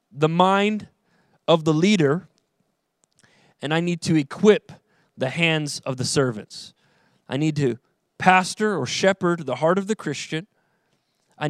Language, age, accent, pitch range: English, 20-39, American, 140-175 Hz